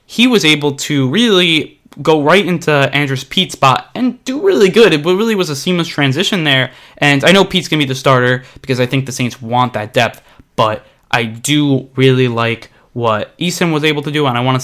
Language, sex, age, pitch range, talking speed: English, male, 20-39, 125-175 Hz, 220 wpm